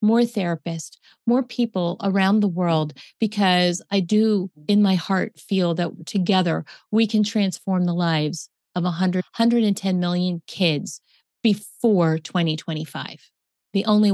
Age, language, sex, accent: 40-59, English, female, American